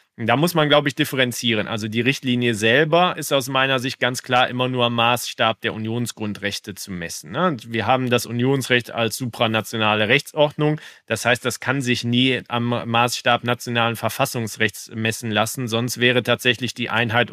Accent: German